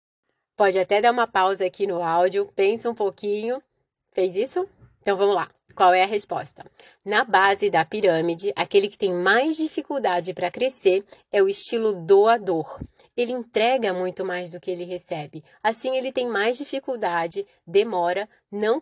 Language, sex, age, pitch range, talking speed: Portuguese, female, 20-39, 185-265 Hz, 160 wpm